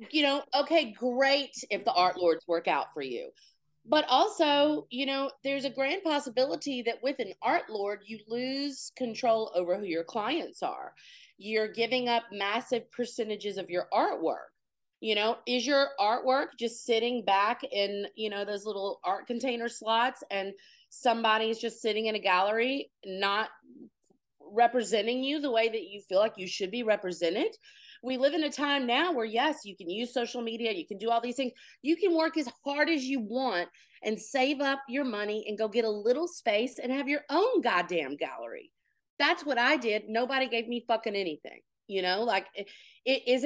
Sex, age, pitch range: female, 30-49, 215-280 Hz